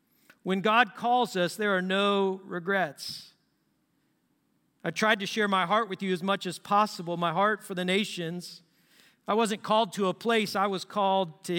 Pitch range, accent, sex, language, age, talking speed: 165-205 Hz, American, male, English, 50-69, 180 wpm